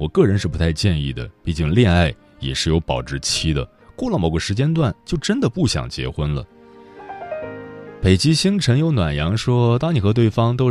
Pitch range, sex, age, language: 75-110 Hz, male, 20-39, Chinese